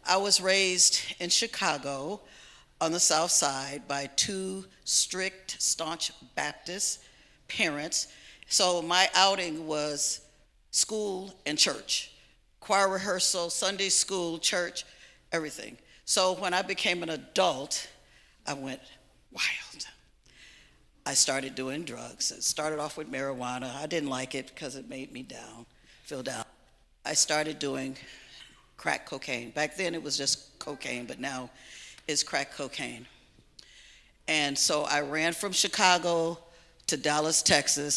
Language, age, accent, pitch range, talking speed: English, 50-69, American, 140-180 Hz, 130 wpm